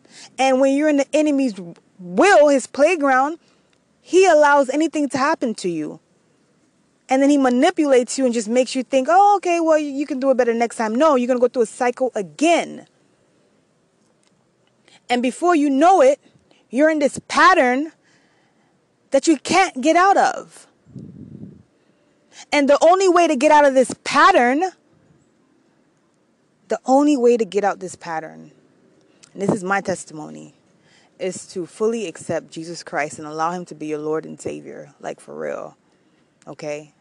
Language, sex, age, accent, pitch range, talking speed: English, female, 20-39, American, 185-295 Hz, 165 wpm